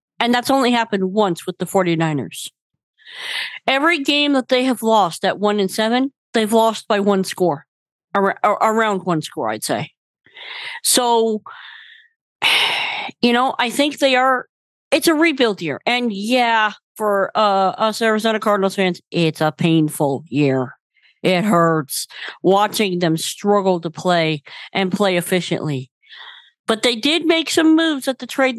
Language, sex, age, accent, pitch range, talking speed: English, female, 40-59, American, 190-260 Hz, 145 wpm